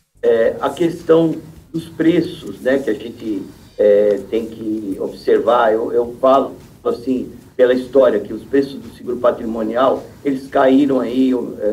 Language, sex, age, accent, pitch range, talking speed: Portuguese, male, 50-69, Brazilian, 115-165 Hz, 150 wpm